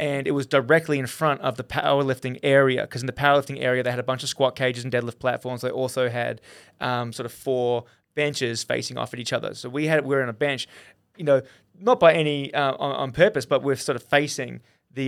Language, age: English, 20-39